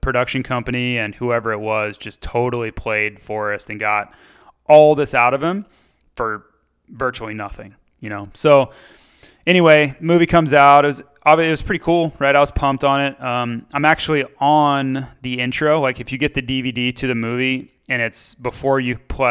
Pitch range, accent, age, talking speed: 115-140 Hz, American, 20-39, 185 wpm